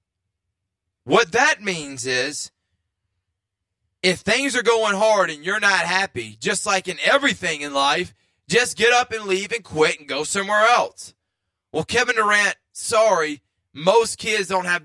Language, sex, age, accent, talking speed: English, male, 20-39, American, 155 wpm